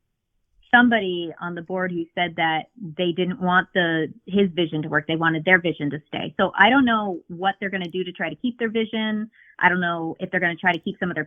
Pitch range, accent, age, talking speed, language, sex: 165-210 Hz, American, 30-49, 260 wpm, English, female